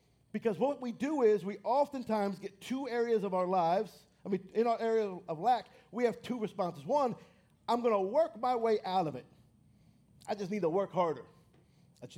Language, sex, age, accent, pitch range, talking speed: English, male, 50-69, American, 200-255 Hz, 205 wpm